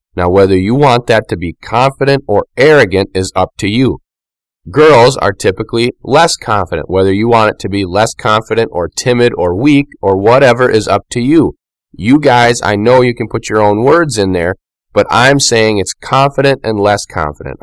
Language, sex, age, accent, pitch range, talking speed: English, male, 30-49, American, 95-120 Hz, 195 wpm